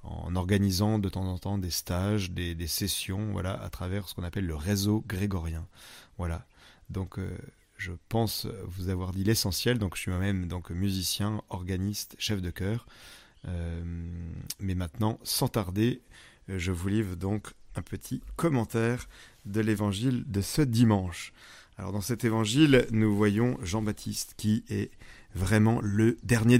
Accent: French